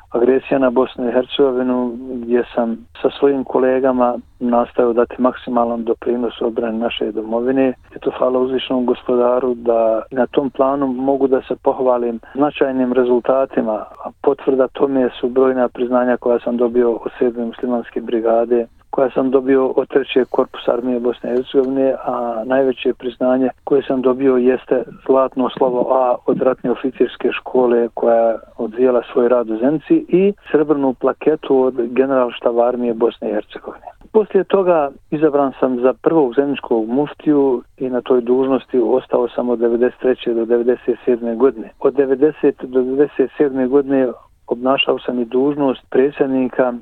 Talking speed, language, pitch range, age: 145 wpm, Croatian, 120-135 Hz, 40-59